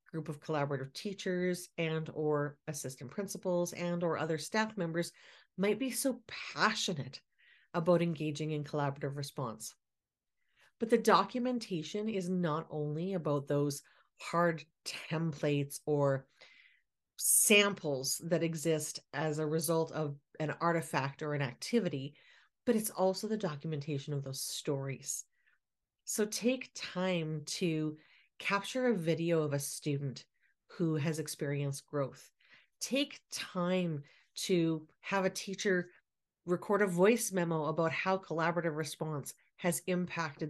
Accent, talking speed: American, 125 wpm